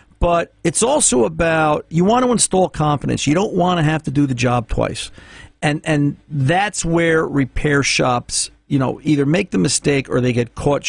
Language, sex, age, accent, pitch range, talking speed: English, male, 50-69, American, 120-145 Hz, 195 wpm